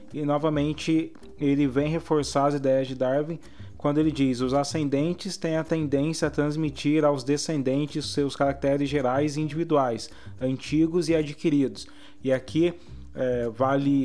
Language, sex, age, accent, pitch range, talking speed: Portuguese, male, 20-39, Brazilian, 130-150 Hz, 135 wpm